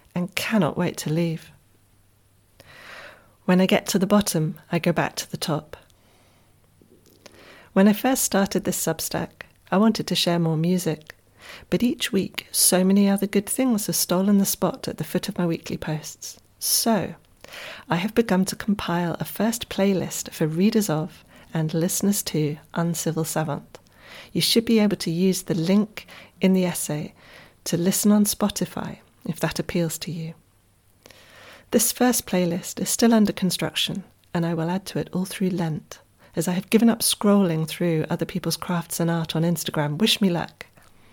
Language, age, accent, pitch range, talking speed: English, 40-59, British, 160-200 Hz, 170 wpm